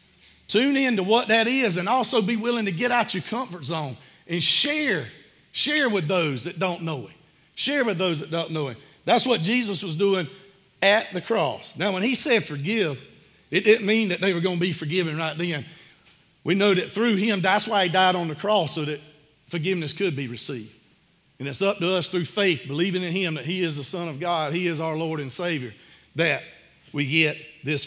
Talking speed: 220 wpm